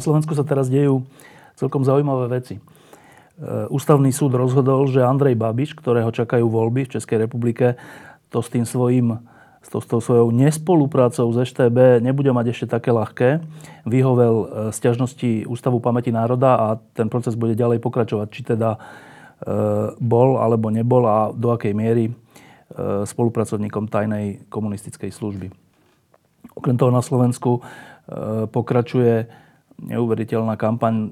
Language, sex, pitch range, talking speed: Slovak, male, 110-125 Hz, 130 wpm